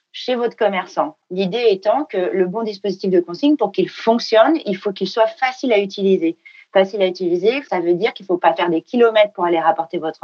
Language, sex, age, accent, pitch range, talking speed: French, female, 40-59, French, 180-225 Hz, 225 wpm